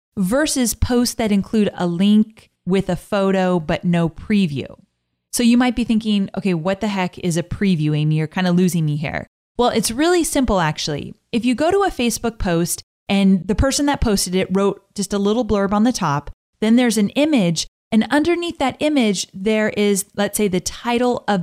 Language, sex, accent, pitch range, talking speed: English, female, American, 180-245 Hz, 200 wpm